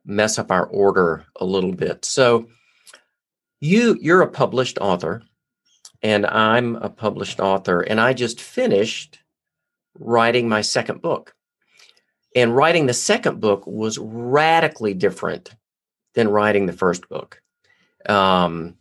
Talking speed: 130 wpm